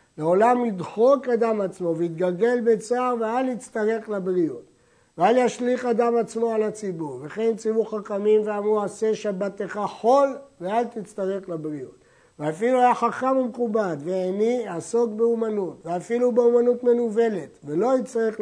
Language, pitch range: Hebrew, 180-230 Hz